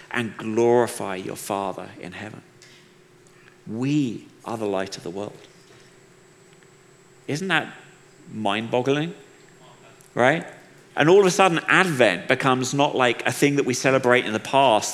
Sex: male